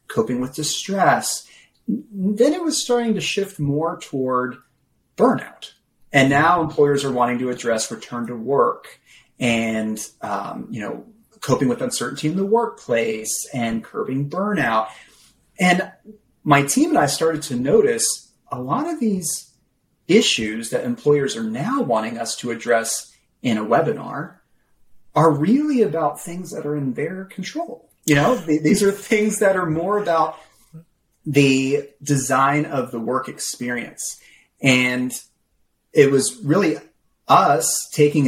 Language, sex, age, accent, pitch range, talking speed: English, male, 30-49, American, 125-190 Hz, 140 wpm